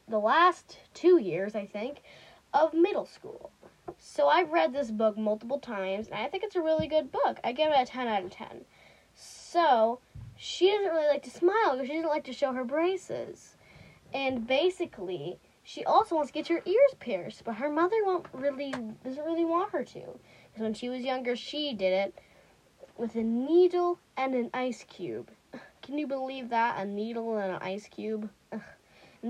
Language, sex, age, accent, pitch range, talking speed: English, female, 10-29, American, 220-320 Hz, 195 wpm